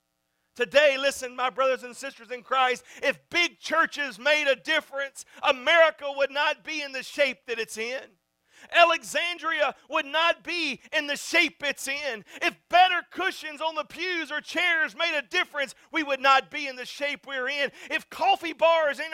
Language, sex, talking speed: English, male, 180 wpm